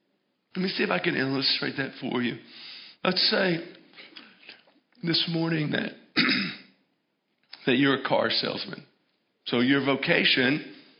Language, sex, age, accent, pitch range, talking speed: English, male, 50-69, American, 155-190 Hz, 125 wpm